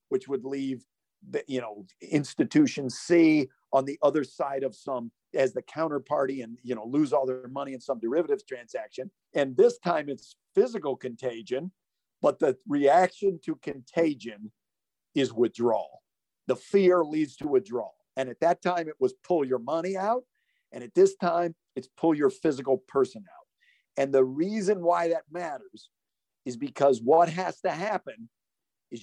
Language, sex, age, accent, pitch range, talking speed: English, male, 50-69, American, 130-185 Hz, 165 wpm